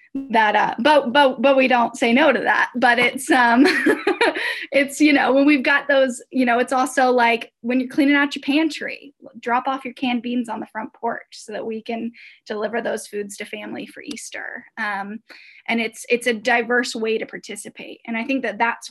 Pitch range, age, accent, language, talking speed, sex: 230-280 Hz, 10-29, American, English, 210 wpm, female